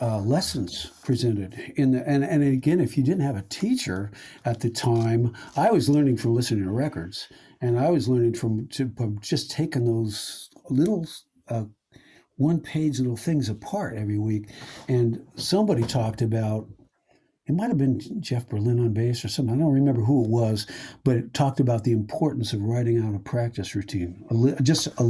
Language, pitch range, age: English, 110-140 Hz, 60-79